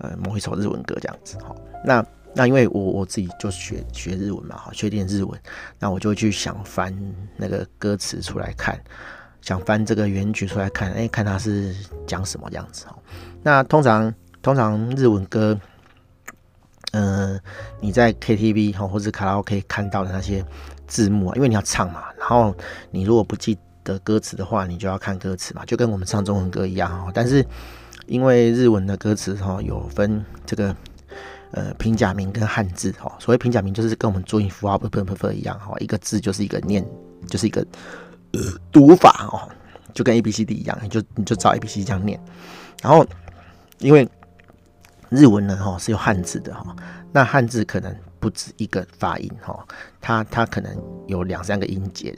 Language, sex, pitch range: Chinese, male, 95-110 Hz